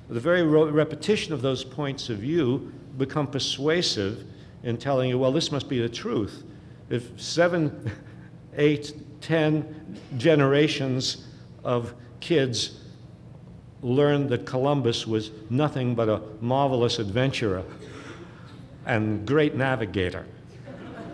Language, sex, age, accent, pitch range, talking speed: English, male, 60-79, American, 125-160 Hz, 110 wpm